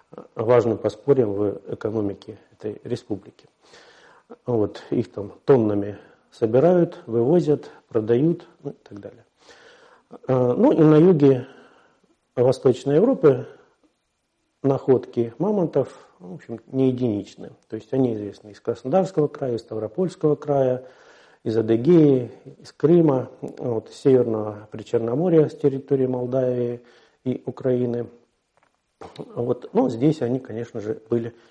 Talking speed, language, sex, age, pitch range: 110 wpm, Russian, male, 50-69, 115-155 Hz